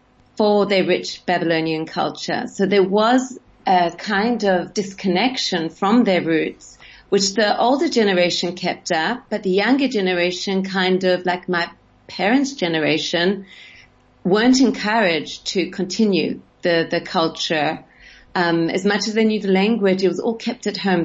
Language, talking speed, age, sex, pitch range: English, 150 wpm, 40-59, female, 175-205 Hz